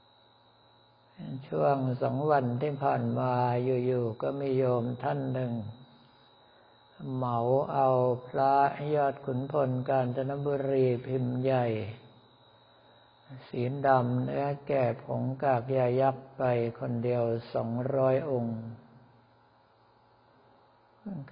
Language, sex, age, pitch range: Thai, male, 60-79, 120-140 Hz